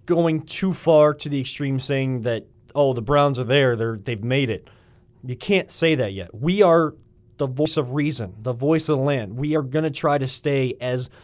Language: English